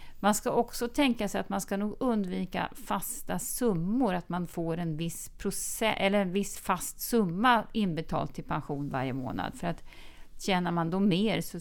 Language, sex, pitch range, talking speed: Swedish, female, 145-205 Hz, 180 wpm